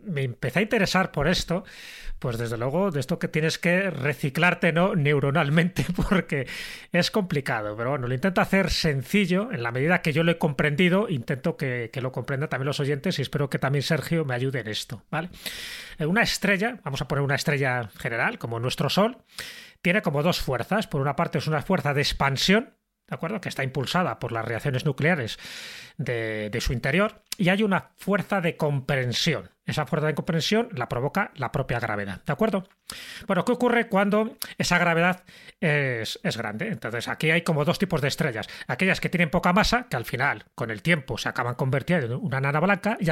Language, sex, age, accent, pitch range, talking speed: Spanish, male, 30-49, Spanish, 140-195 Hz, 195 wpm